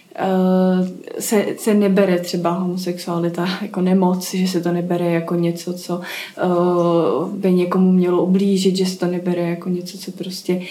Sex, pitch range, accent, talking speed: female, 180-205 Hz, native, 150 wpm